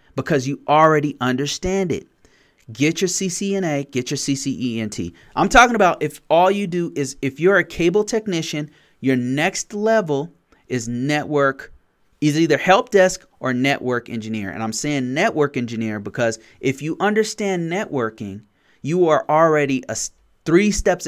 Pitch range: 120-165 Hz